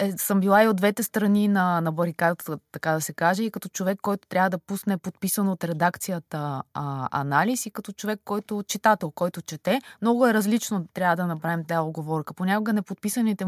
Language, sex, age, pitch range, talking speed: Bulgarian, female, 20-39, 170-210 Hz, 185 wpm